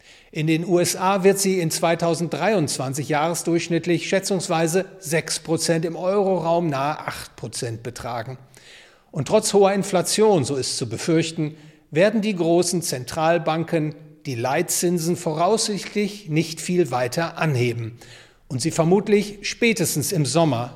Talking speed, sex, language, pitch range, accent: 120 wpm, male, English, 140-180 Hz, German